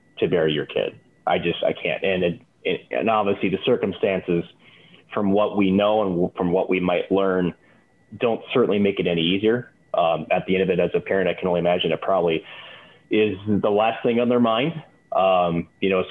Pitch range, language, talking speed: 90-100 Hz, English, 210 wpm